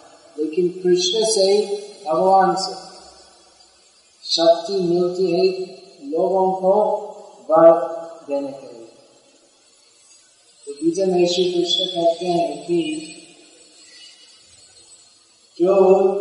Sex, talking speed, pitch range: male, 70 wpm, 175-210 Hz